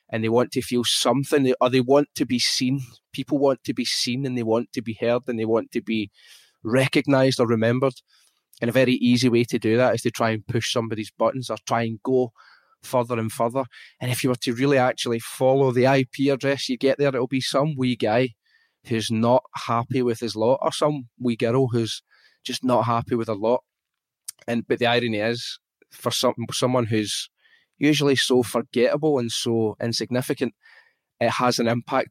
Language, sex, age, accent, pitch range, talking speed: English, male, 20-39, British, 115-130 Hz, 200 wpm